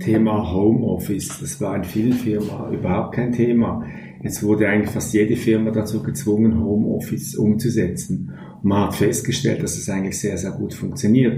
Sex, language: male, German